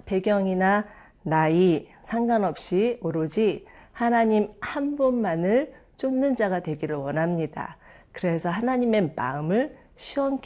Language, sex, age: Korean, female, 40-59